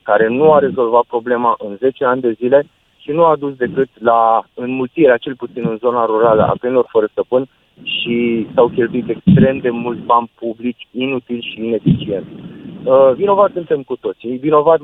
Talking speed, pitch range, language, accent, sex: 175 wpm, 120-170 Hz, Romanian, native, male